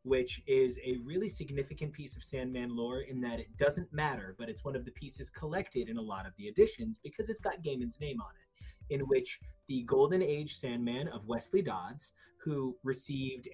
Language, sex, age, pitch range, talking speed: English, male, 30-49, 125-170 Hz, 200 wpm